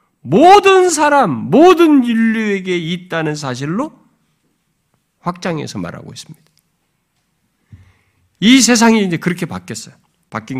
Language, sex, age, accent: Korean, male, 50-69, native